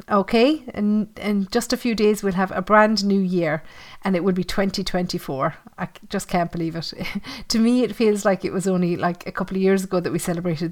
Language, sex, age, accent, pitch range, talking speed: English, female, 40-59, Irish, 180-235 Hz, 225 wpm